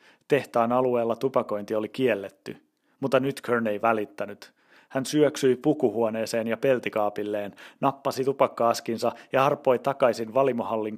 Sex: male